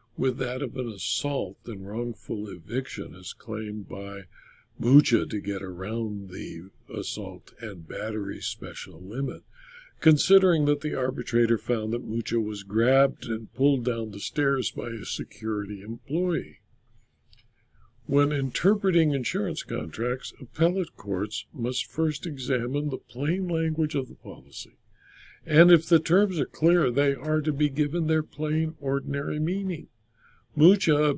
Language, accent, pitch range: English, American, 125-165 Hz